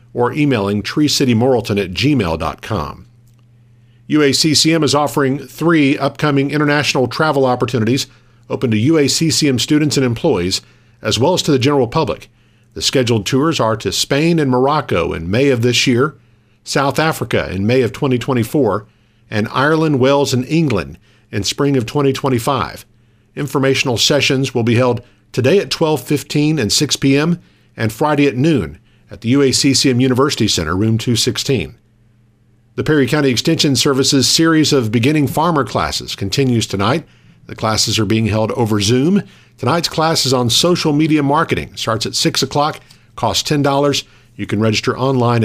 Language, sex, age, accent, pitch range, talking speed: English, male, 50-69, American, 115-140 Hz, 150 wpm